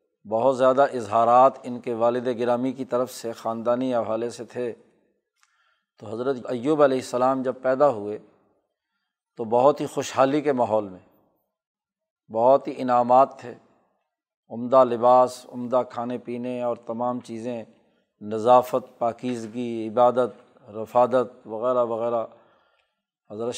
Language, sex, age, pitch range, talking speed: Urdu, male, 40-59, 120-145 Hz, 120 wpm